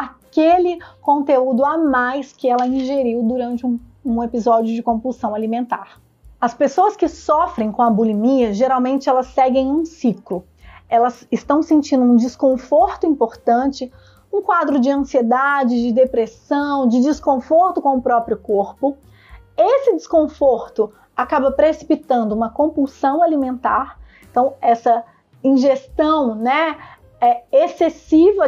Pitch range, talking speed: 240-305 Hz, 120 wpm